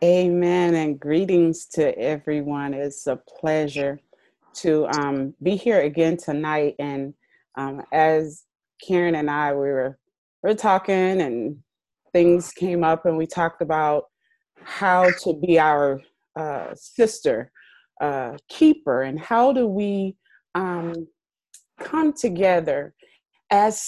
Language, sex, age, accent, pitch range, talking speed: English, female, 30-49, American, 155-210 Hz, 125 wpm